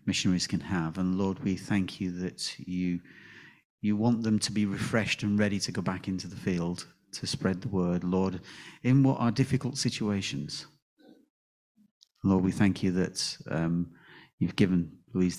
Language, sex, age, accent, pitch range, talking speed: English, male, 40-59, British, 95-115 Hz, 170 wpm